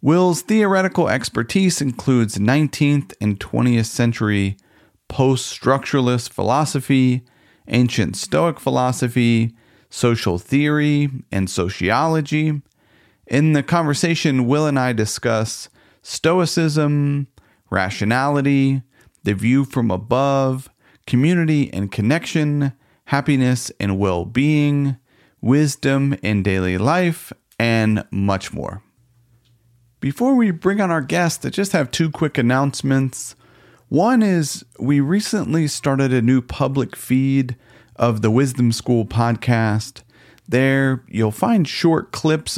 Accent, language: American, English